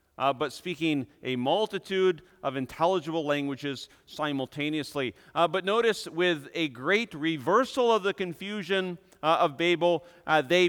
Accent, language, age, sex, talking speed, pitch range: American, English, 40-59, male, 135 wpm, 160-205 Hz